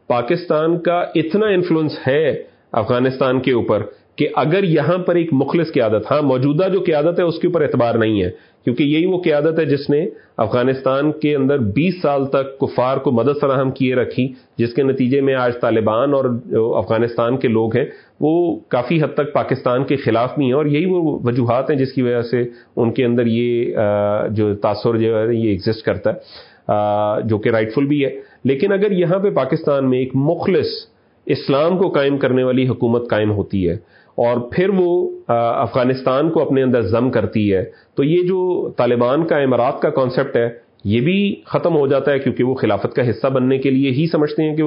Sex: male